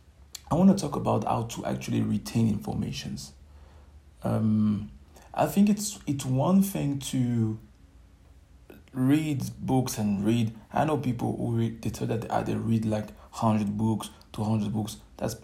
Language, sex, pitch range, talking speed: English, male, 90-120 Hz, 150 wpm